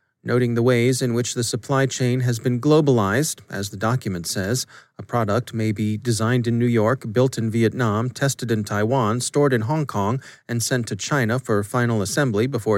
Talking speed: 195 wpm